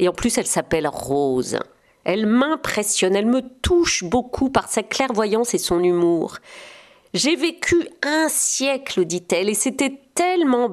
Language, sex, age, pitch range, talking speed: French, female, 40-59, 195-280 Hz, 160 wpm